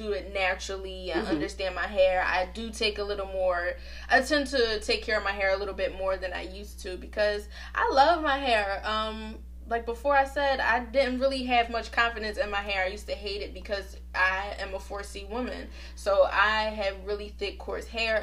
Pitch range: 195-235 Hz